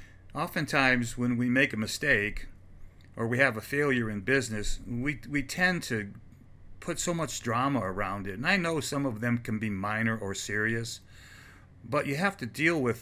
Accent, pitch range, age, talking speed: American, 100-135 Hz, 50-69, 185 wpm